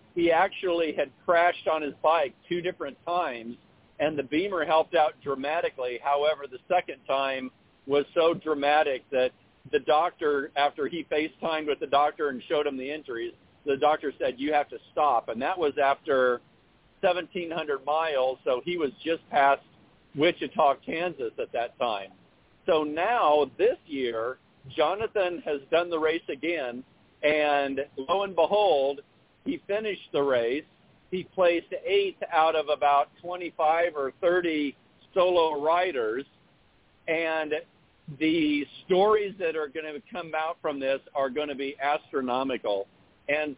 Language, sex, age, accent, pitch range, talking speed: English, male, 50-69, American, 140-175 Hz, 145 wpm